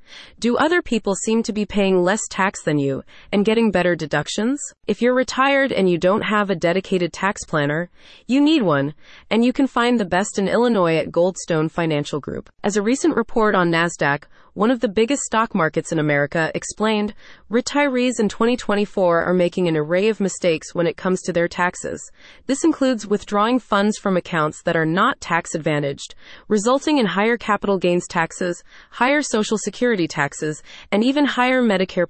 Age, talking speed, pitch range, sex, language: 30-49, 180 wpm, 170-230 Hz, female, English